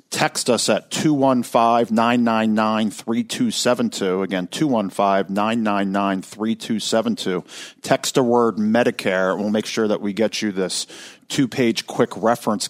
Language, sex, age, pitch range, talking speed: English, male, 50-69, 95-115 Hz, 105 wpm